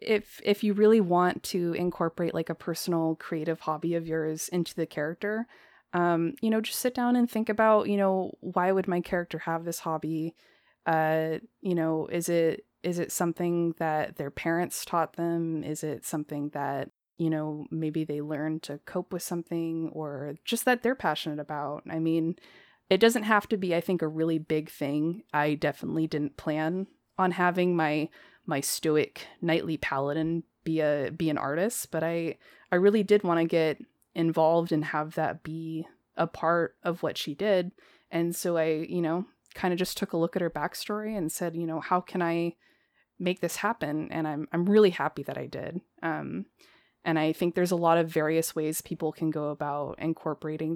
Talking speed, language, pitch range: 190 wpm, English, 155-180 Hz